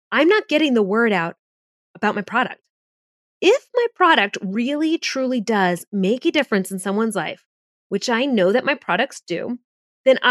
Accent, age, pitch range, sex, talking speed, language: American, 30-49, 195-275 Hz, female, 170 wpm, English